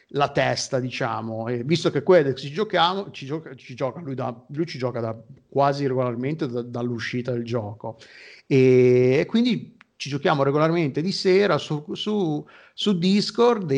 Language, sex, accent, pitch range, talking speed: Italian, male, native, 140-180 Hz, 150 wpm